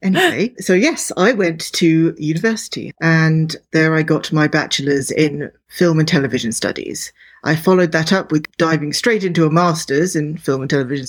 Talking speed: 175 wpm